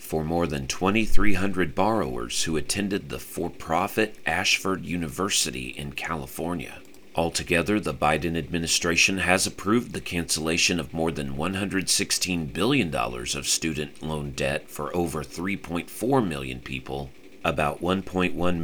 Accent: American